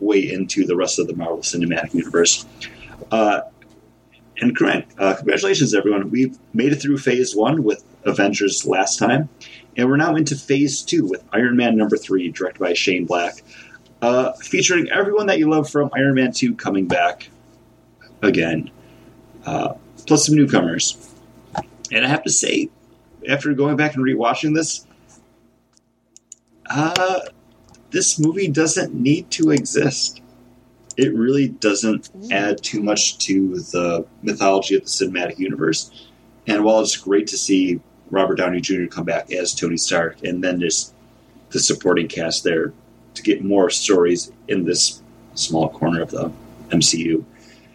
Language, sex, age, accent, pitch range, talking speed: English, male, 30-49, American, 100-145 Hz, 150 wpm